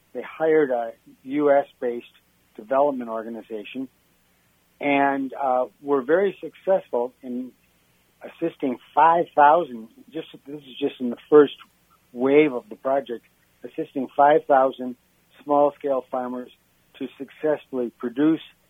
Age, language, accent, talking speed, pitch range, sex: 60-79, English, American, 105 wpm, 120-145 Hz, male